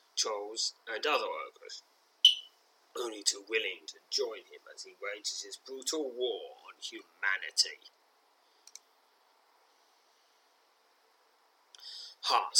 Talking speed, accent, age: 90 wpm, British, 30-49